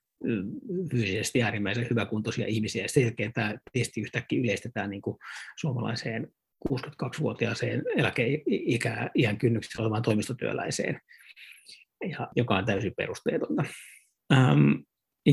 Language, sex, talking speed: Finnish, male, 95 wpm